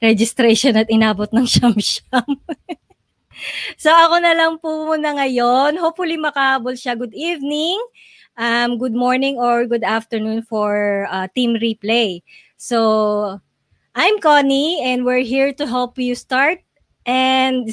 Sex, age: female, 20-39